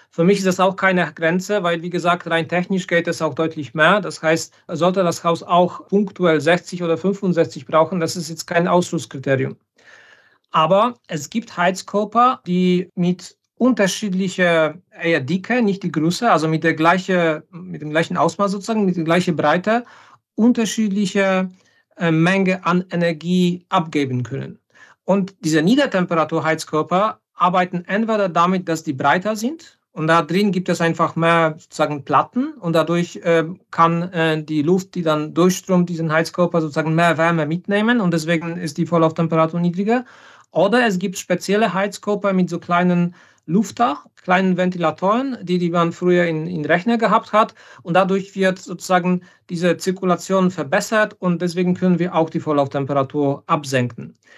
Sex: male